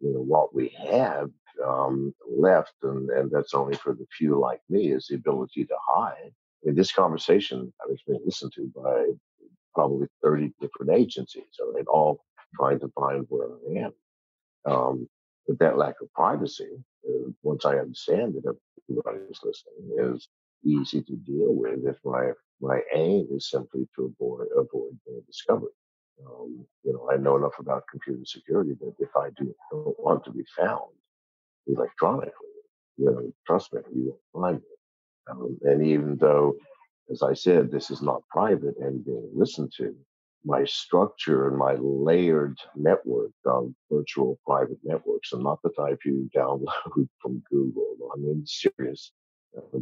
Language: English